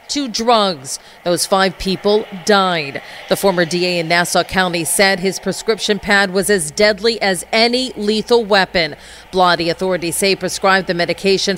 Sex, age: female, 40-59